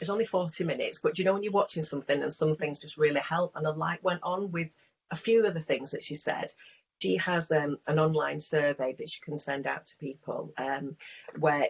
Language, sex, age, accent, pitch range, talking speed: English, female, 30-49, British, 145-170 Hz, 235 wpm